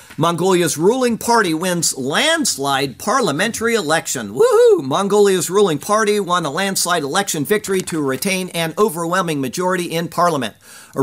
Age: 50-69